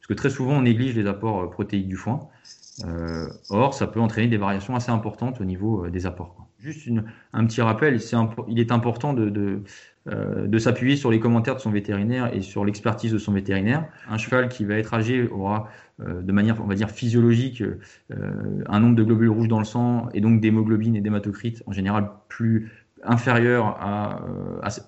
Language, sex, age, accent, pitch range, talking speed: French, male, 20-39, French, 100-115 Hz, 210 wpm